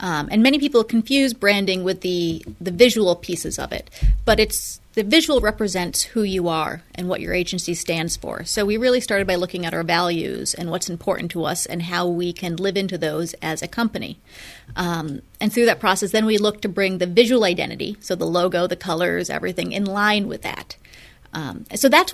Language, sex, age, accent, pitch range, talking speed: English, female, 30-49, American, 180-220 Hz, 210 wpm